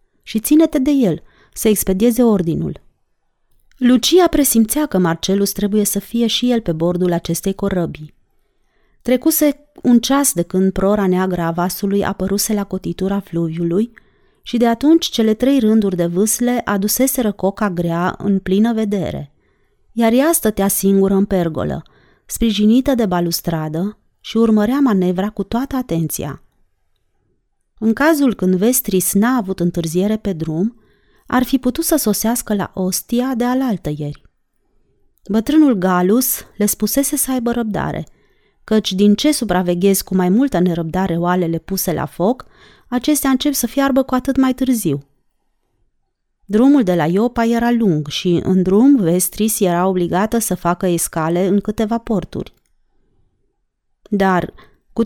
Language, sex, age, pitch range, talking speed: Romanian, female, 30-49, 185-245 Hz, 140 wpm